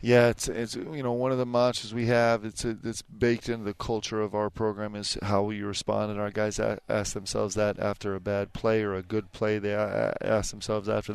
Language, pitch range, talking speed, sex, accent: English, 105-115 Hz, 230 wpm, male, American